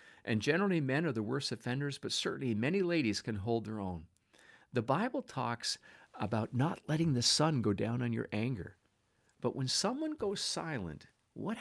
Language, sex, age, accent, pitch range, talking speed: English, male, 50-69, American, 100-130 Hz, 175 wpm